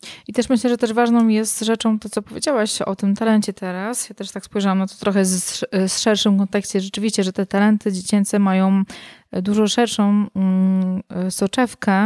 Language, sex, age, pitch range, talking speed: Polish, female, 20-39, 190-215 Hz, 175 wpm